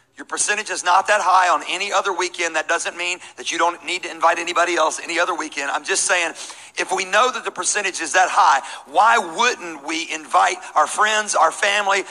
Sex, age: male, 40-59